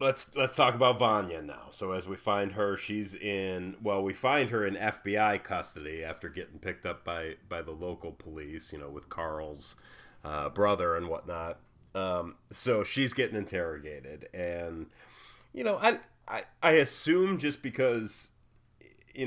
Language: English